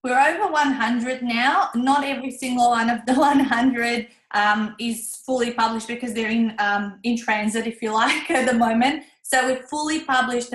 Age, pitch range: 20-39, 215-245 Hz